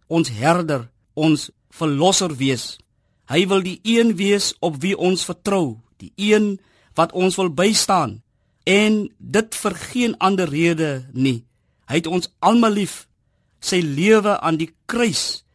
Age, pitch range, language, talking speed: 50-69, 135-190 Hz, Dutch, 145 wpm